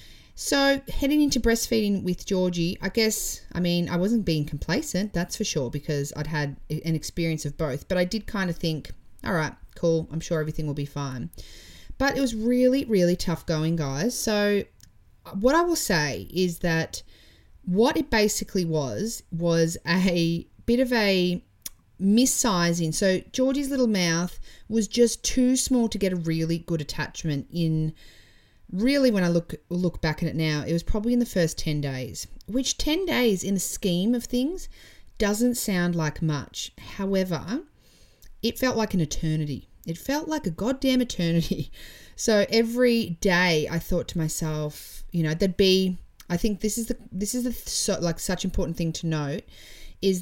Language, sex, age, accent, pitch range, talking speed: English, female, 30-49, Australian, 155-205 Hz, 175 wpm